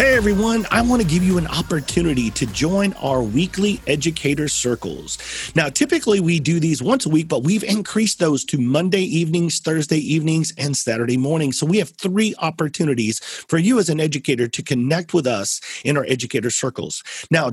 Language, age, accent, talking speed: English, 40-59, American, 185 wpm